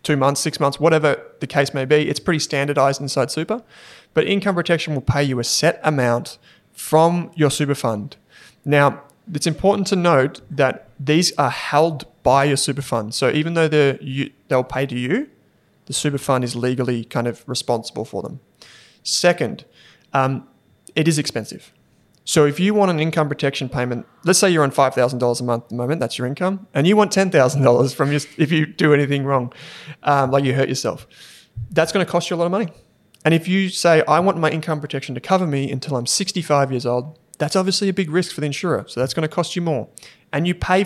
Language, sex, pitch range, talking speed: English, male, 135-170 Hz, 215 wpm